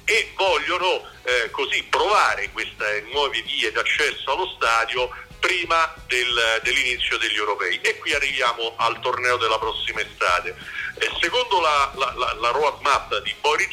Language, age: Italian, 50-69